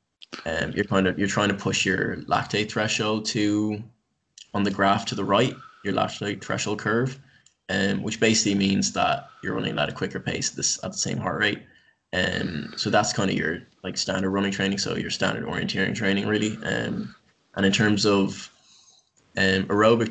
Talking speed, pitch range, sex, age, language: 195 wpm, 95-110 Hz, male, 20-39, English